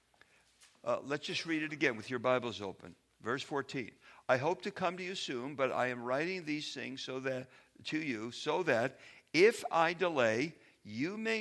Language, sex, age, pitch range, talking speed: English, male, 60-79, 135-195 Hz, 190 wpm